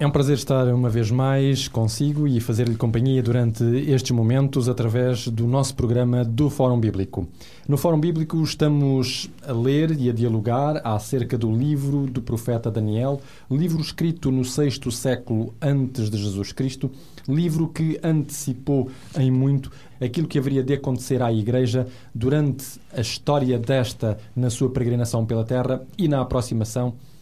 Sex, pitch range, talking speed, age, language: male, 120-140 Hz, 150 wpm, 20-39, Portuguese